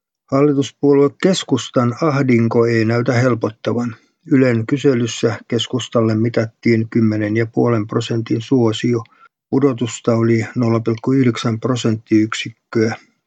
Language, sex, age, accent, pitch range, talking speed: Finnish, male, 50-69, native, 115-125 Hz, 75 wpm